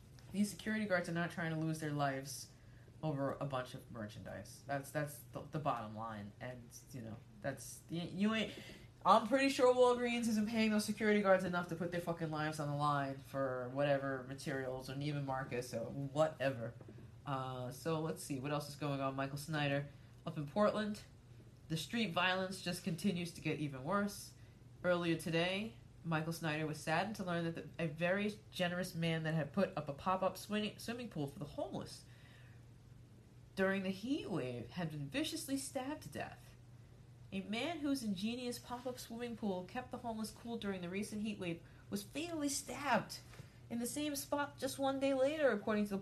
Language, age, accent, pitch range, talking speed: English, 20-39, American, 130-210 Hz, 185 wpm